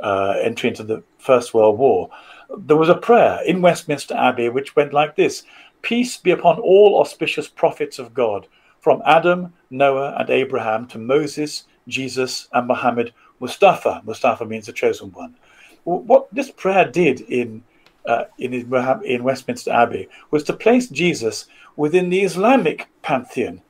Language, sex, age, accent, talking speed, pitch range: English, male, 50-69, British, 155 wpm, 130-210 Hz